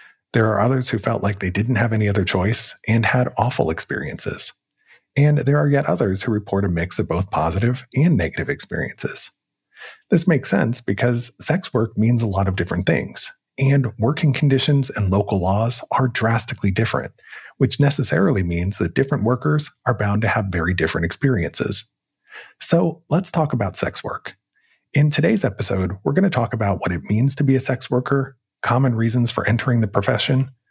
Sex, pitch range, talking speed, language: male, 100-135 Hz, 180 wpm, English